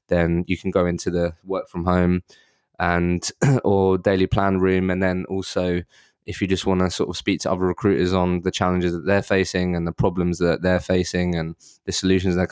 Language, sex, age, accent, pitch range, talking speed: English, male, 20-39, British, 90-95 Hz, 210 wpm